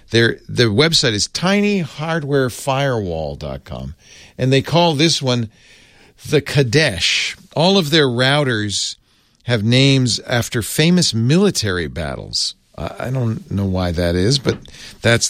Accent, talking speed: American, 120 wpm